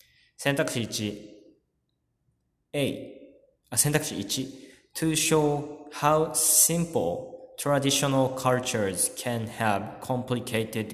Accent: native